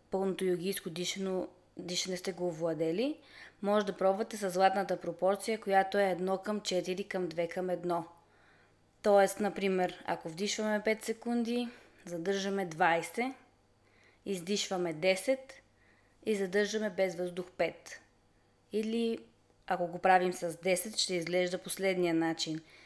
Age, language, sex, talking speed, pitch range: 20-39, Bulgarian, female, 120 wpm, 175-205 Hz